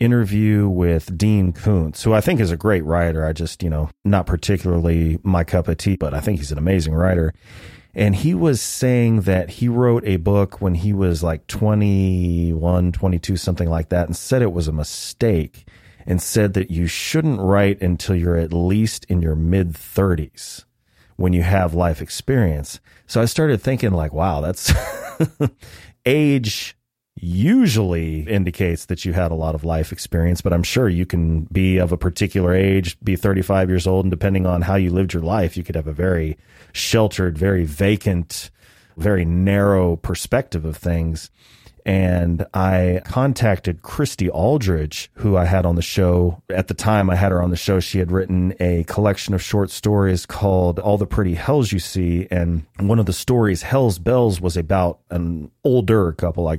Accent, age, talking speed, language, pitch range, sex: American, 30-49, 180 wpm, English, 85-105 Hz, male